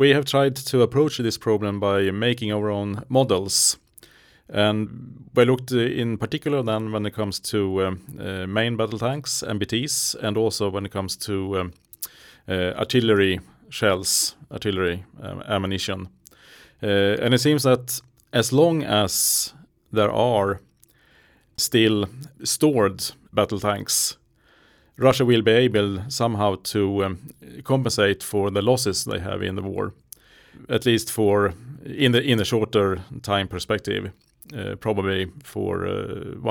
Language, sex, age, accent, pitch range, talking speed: Swedish, male, 30-49, Norwegian, 100-125 Hz, 135 wpm